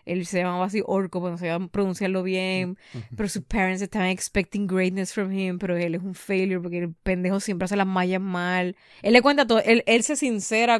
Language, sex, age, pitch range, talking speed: Spanish, female, 20-39, 195-270 Hz, 235 wpm